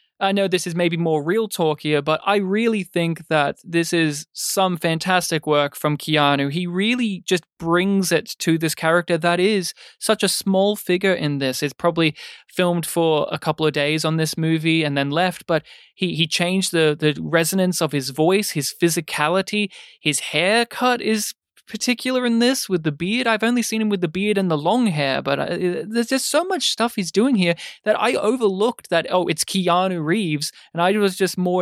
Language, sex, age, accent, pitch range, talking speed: English, male, 20-39, Australian, 160-205 Hz, 200 wpm